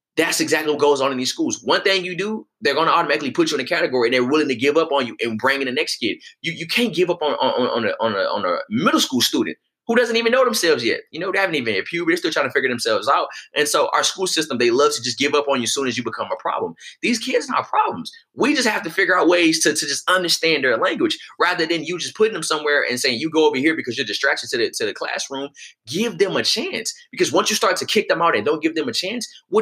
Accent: American